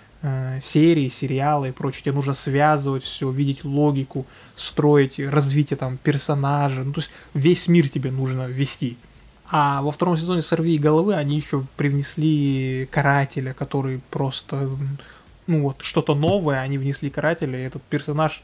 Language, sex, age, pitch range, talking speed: Russian, male, 20-39, 135-160 Hz, 145 wpm